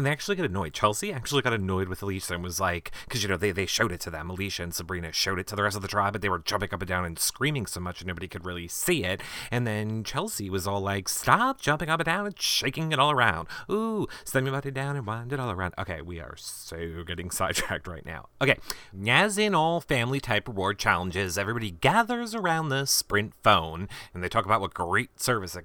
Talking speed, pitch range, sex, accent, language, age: 255 wpm, 95-165 Hz, male, American, English, 30-49